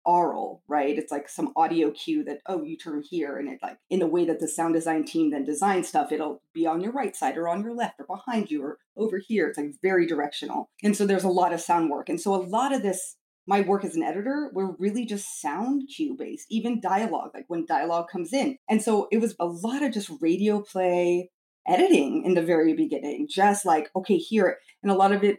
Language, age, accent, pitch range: English, 30-49, American, 170-240 Hz